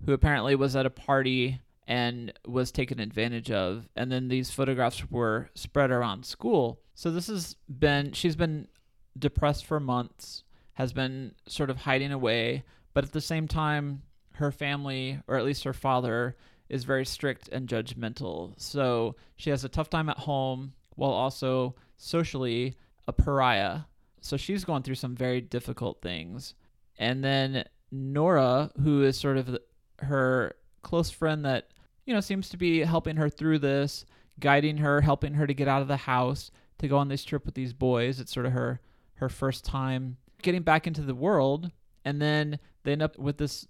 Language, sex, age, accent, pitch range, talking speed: English, male, 30-49, American, 125-145 Hz, 175 wpm